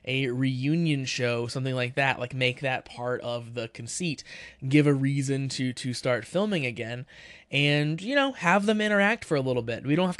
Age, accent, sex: 20-39, American, male